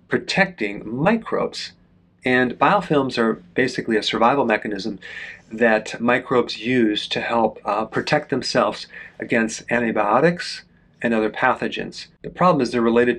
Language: English